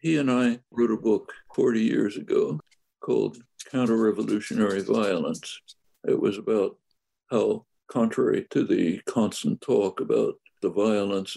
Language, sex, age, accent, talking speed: English, male, 60-79, American, 125 wpm